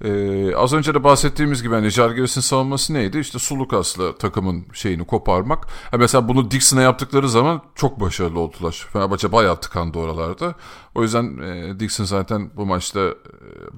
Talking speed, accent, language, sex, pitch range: 165 wpm, native, Turkish, male, 95-135 Hz